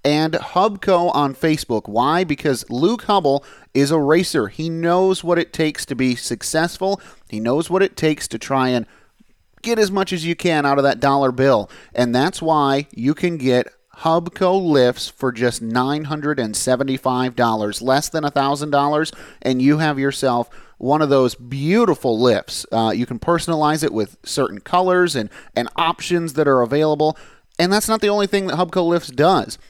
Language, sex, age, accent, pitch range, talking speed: English, male, 30-49, American, 130-165 Hz, 170 wpm